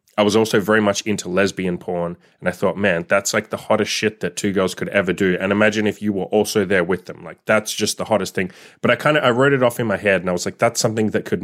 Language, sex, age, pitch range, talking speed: English, male, 20-39, 95-110 Hz, 300 wpm